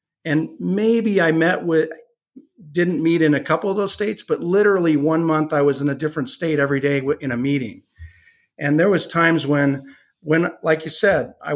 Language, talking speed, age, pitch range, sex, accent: English, 195 wpm, 50-69, 145-170 Hz, male, American